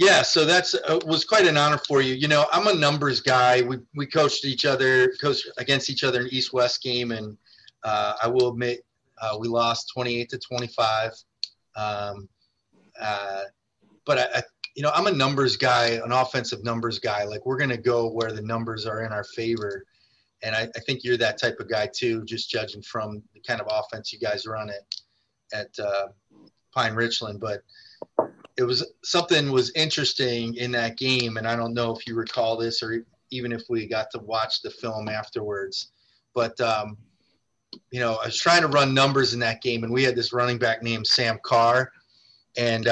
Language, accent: English, American